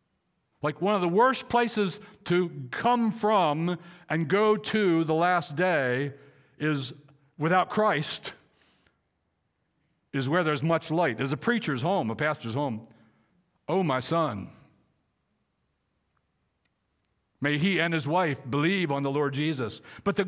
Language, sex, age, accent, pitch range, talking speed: English, male, 60-79, American, 140-205 Hz, 135 wpm